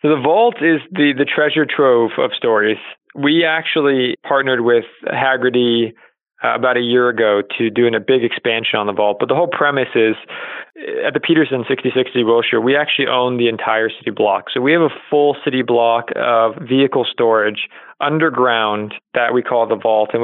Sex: male